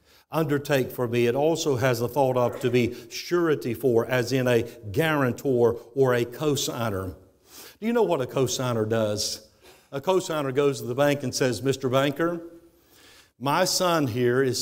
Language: English